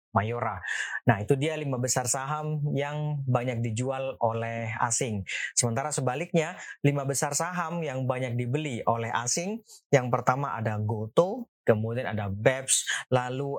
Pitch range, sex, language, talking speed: 115-145 Hz, male, Indonesian, 135 wpm